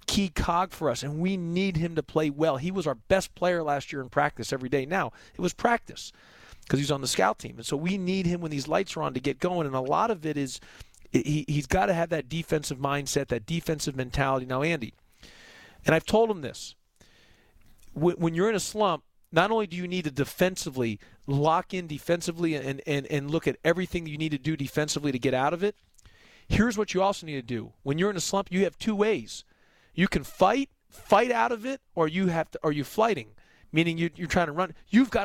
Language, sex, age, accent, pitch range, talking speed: English, male, 40-59, American, 150-200 Hz, 235 wpm